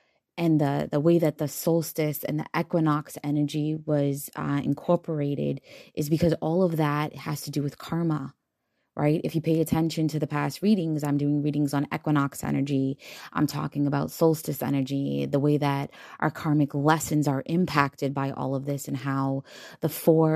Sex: female